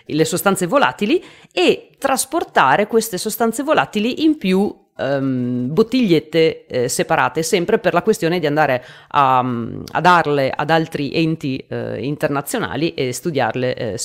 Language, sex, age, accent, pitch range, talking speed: Italian, female, 30-49, native, 145-205 Hz, 130 wpm